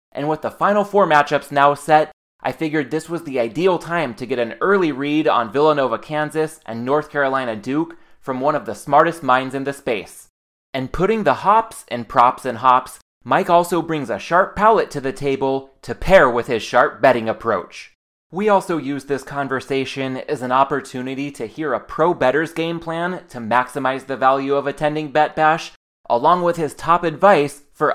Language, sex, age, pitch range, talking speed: English, male, 20-39, 135-180 Hz, 190 wpm